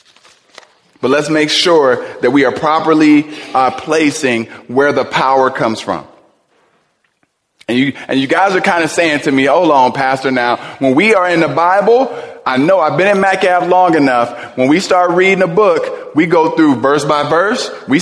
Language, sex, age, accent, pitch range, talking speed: English, male, 20-39, American, 145-195 Hz, 190 wpm